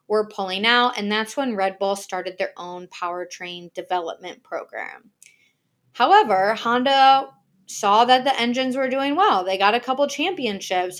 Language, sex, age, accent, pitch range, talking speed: English, female, 20-39, American, 190-255 Hz, 155 wpm